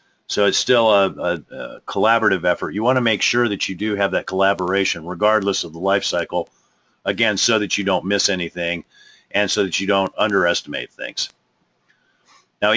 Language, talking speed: English, 185 wpm